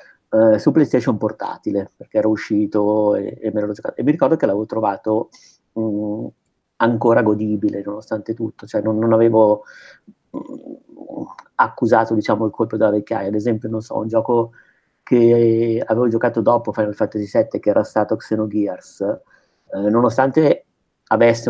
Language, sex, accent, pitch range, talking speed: Italian, male, native, 105-115 Hz, 150 wpm